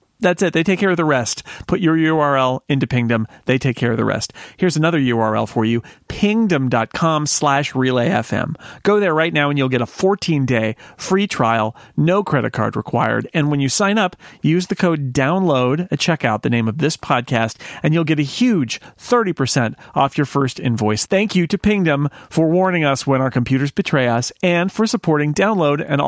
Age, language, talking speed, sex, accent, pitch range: 40-59, English, 195 wpm, male, American, 125-170 Hz